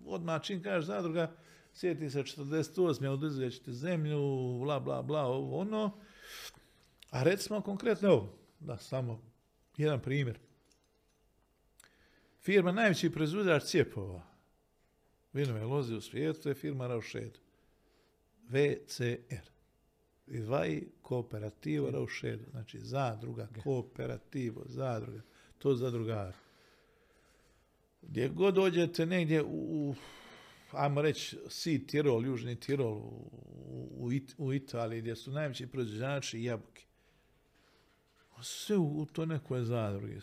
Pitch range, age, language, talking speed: 120-160 Hz, 60-79, Croatian, 100 wpm